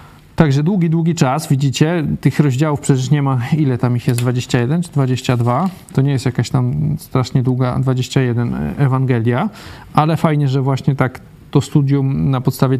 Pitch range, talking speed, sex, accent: 130-155 Hz, 165 wpm, male, native